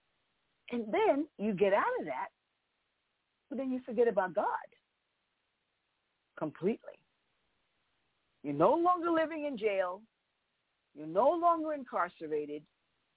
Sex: female